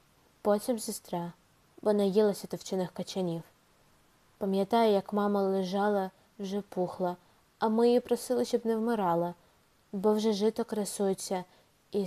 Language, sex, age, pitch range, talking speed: Ukrainian, female, 20-39, 175-210 Hz, 120 wpm